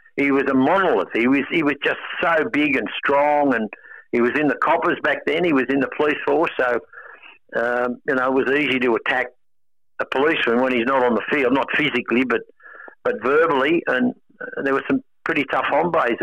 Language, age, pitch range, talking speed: English, 60-79, 115-155 Hz, 210 wpm